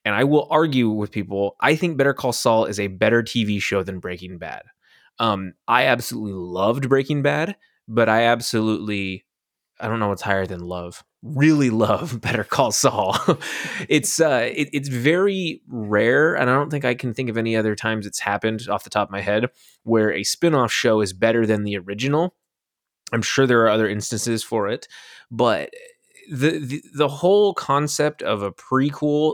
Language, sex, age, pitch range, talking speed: English, male, 20-39, 110-140 Hz, 185 wpm